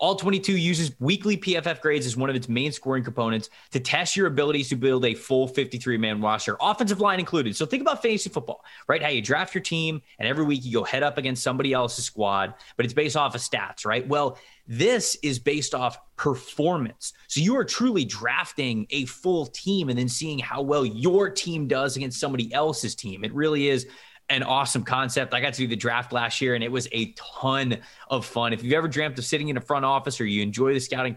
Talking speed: 225 wpm